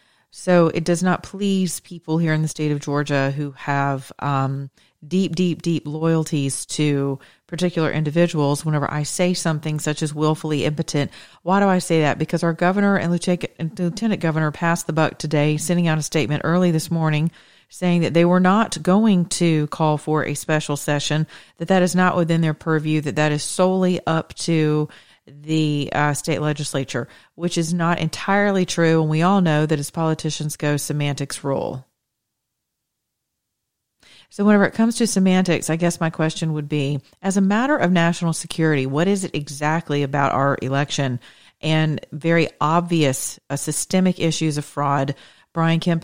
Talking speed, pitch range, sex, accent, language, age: 170 wpm, 145-175 Hz, female, American, English, 40-59